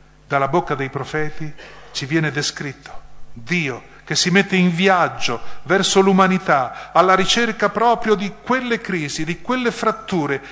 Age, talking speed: 40-59, 135 wpm